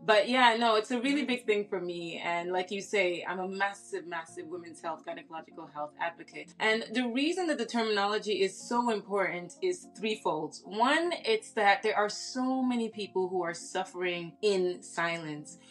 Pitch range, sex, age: 180-235 Hz, female, 20-39